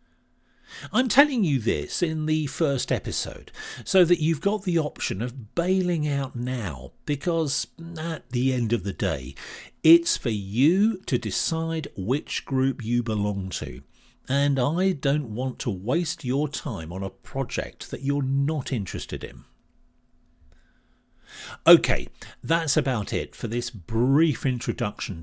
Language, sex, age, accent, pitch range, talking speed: English, male, 50-69, British, 110-165 Hz, 140 wpm